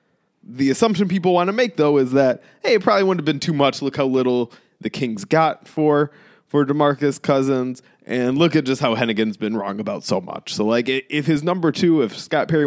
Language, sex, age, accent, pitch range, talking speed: English, male, 20-39, American, 140-195 Hz, 225 wpm